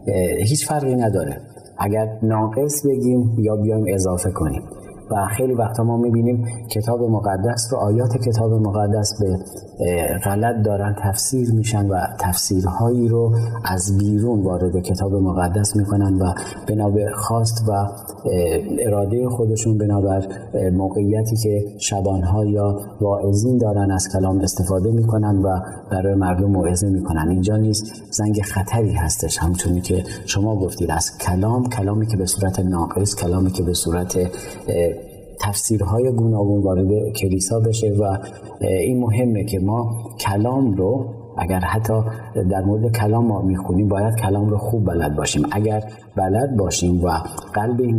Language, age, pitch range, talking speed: Persian, 40-59, 95-110 Hz, 135 wpm